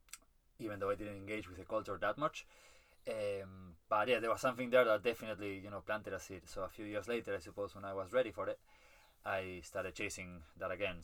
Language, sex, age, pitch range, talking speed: English, male, 20-39, 90-110 Hz, 230 wpm